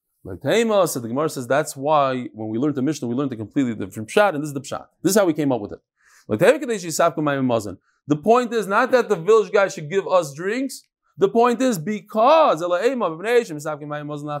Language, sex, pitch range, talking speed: English, male, 150-240 Hz, 185 wpm